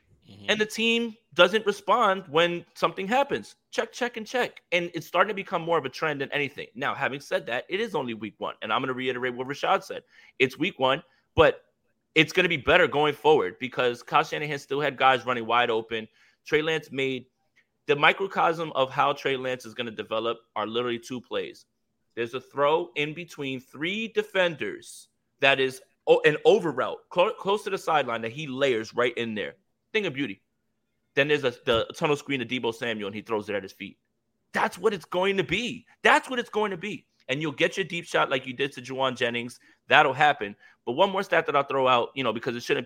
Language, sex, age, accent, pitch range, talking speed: English, male, 30-49, American, 115-180 Hz, 220 wpm